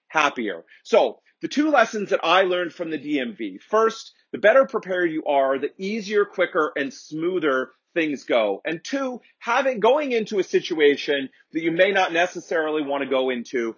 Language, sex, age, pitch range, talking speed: English, male, 40-59, 145-225 Hz, 175 wpm